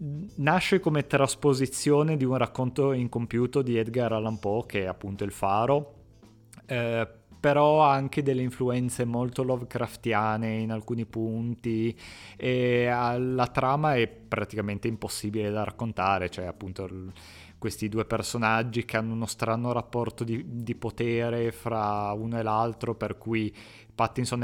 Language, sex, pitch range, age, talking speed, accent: Italian, male, 110-125 Hz, 20-39, 135 wpm, native